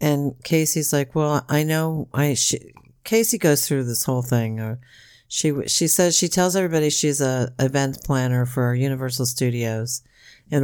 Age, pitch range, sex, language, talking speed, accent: 50-69, 135-180 Hz, female, English, 165 wpm, American